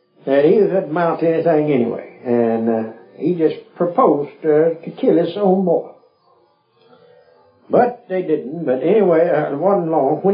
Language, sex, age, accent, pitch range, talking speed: English, male, 60-79, American, 125-180 Hz, 155 wpm